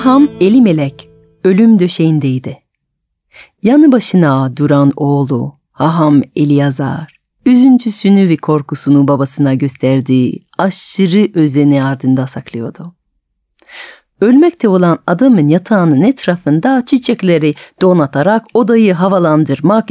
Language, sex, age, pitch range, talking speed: Turkish, female, 40-59, 145-225 Hz, 85 wpm